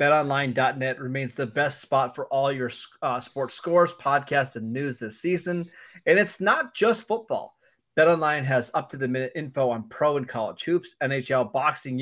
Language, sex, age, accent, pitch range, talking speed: English, male, 20-39, American, 130-165 Hz, 160 wpm